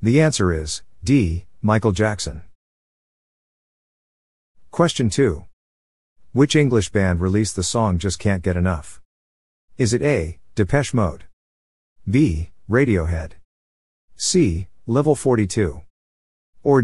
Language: English